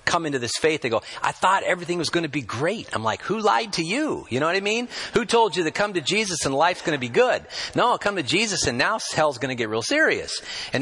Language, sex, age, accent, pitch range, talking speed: English, male, 40-59, American, 110-165 Hz, 285 wpm